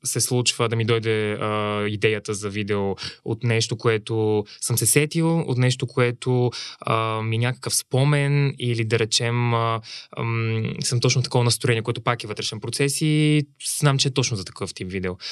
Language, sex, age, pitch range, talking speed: Bulgarian, male, 20-39, 115-140 Hz, 175 wpm